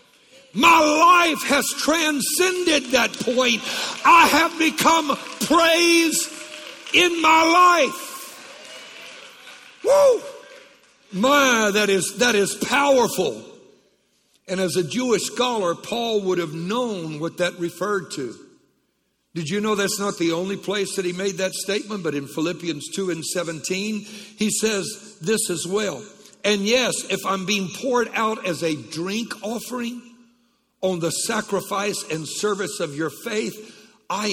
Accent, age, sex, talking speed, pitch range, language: American, 60-79, male, 135 wpm, 185-270 Hz, English